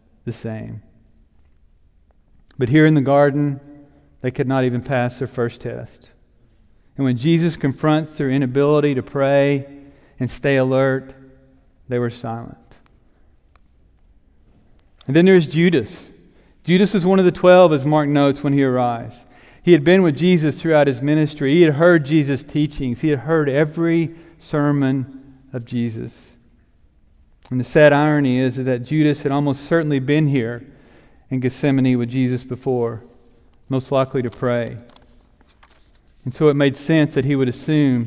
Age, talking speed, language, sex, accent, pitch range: 40-59, 150 wpm, English, male, American, 120-150 Hz